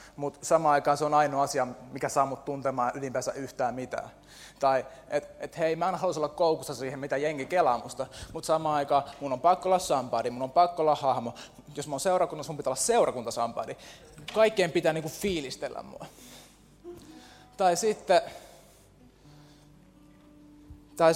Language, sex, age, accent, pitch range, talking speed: Finnish, male, 20-39, native, 125-155 Hz, 160 wpm